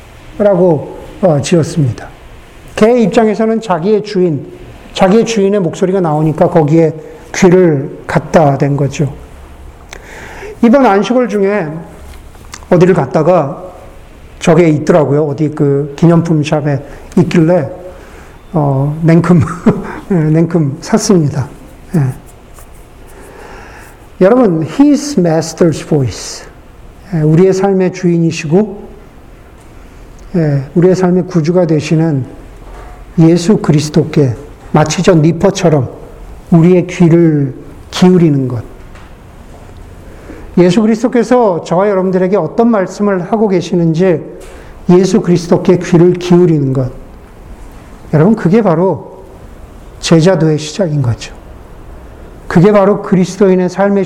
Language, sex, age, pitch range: Korean, male, 50-69, 145-190 Hz